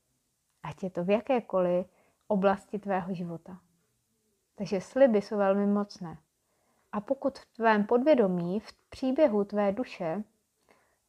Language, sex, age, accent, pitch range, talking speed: Czech, female, 30-49, native, 185-215 Hz, 125 wpm